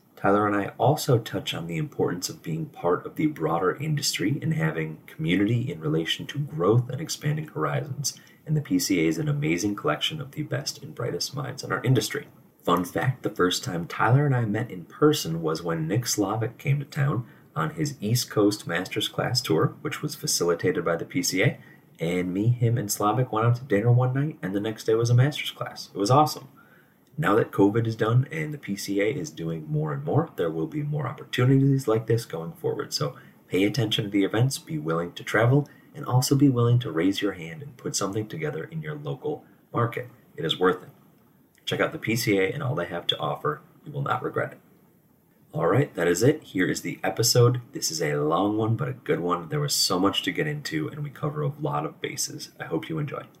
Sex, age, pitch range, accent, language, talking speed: male, 30-49, 110-150 Hz, American, English, 220 wpm